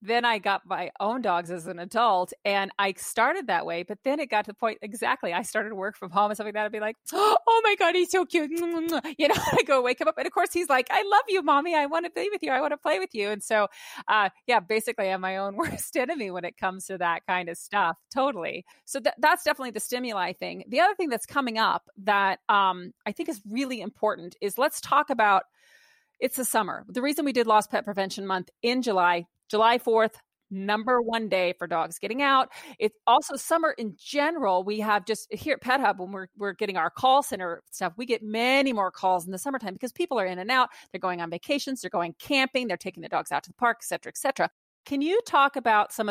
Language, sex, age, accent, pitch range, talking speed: English, female, 30-49, American, 190-265 Hz, 250 wpm